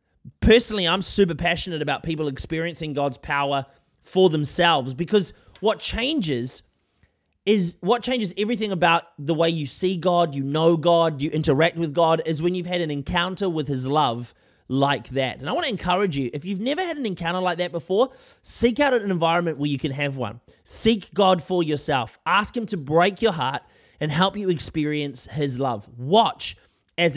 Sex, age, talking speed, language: male, 20-39, 185 wpm, English